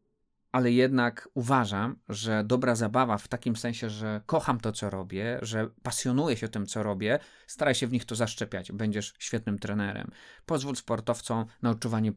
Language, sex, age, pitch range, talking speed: Polish, male, 20-39, 105-120 Hz, 165 wpm